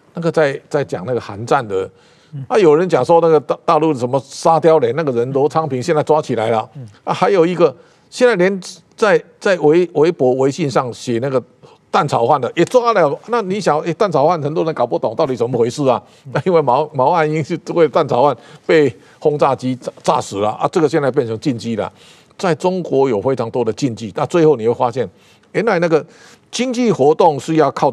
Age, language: 50-69, Chinese